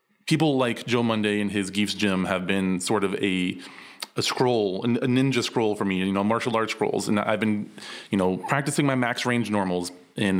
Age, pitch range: 20-39, 100-125 Hz